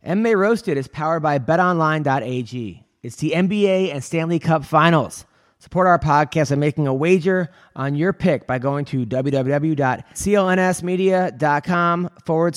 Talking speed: 135 wpm